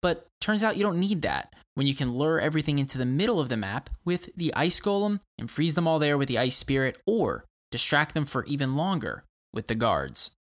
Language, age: English, 20-39